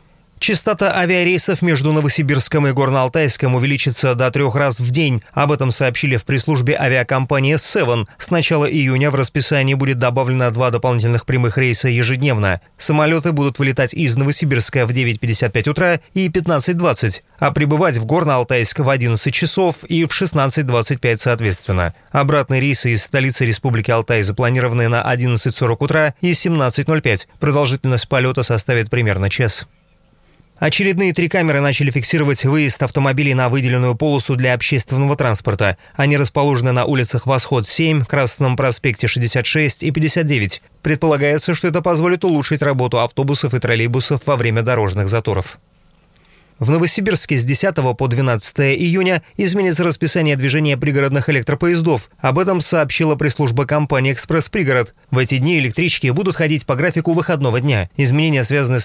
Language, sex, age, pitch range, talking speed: Russian, male, 30-49, 125-155 Hz, 140 wpm